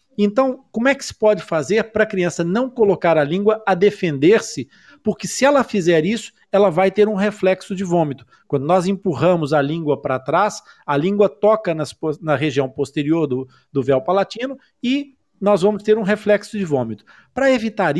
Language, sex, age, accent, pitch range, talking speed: Portuguese, male, 50-69, Brazilian, 155-215 Hz, 185 wpm